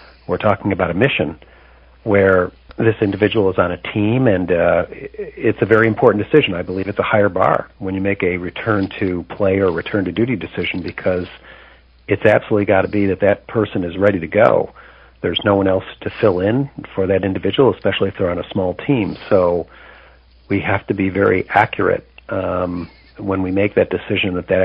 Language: English